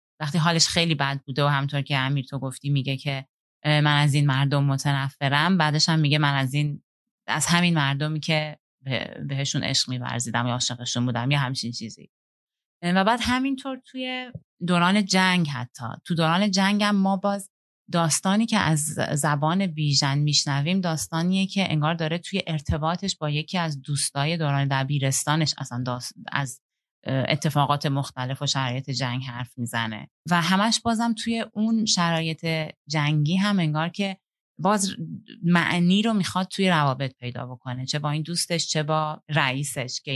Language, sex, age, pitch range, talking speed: Persian, female, 30-49, 135-175 Hz, 155 wpm